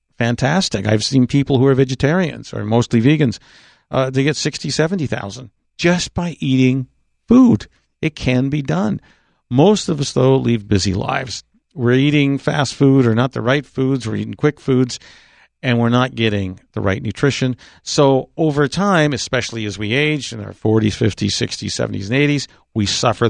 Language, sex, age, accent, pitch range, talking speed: English, male, 50-69, American, 115-135 Hz, 175 wpm